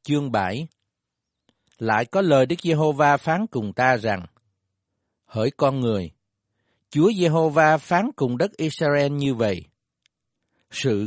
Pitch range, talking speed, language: 115-165 Hz, 125 wpm, Vietnamese